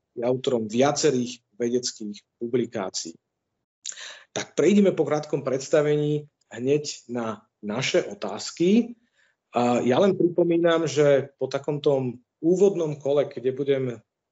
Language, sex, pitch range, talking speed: Slovak, male, 125-150 Hz, 105 wpm